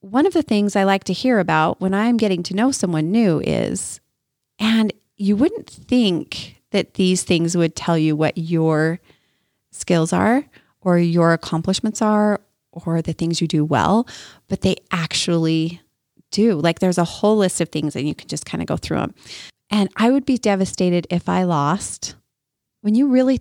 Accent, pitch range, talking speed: American, 165-205 Hz, 185 wpm